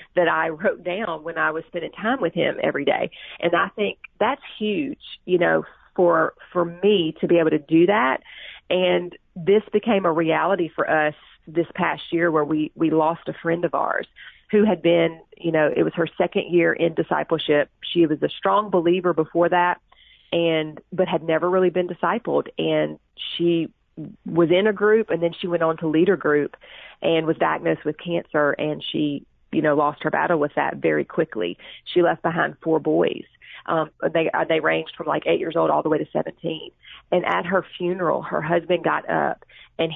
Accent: American